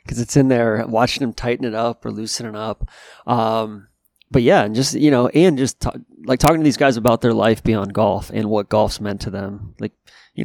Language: English